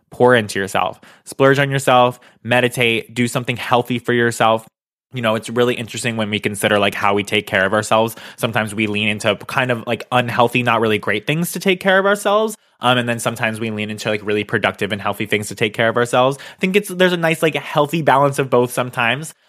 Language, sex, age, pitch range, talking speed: English, male, 20-39, 110-135 Hz, 230 wpm